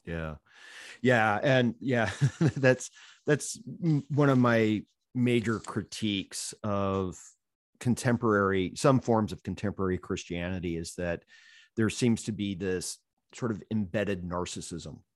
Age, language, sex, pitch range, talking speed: 40-59, English, male, 90-115 Hz, 115 wpm